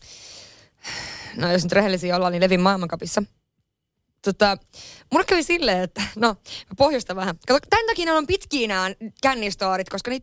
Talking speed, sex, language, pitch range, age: 145 wpm, female, Finnish, 185-250 Hz, 20-39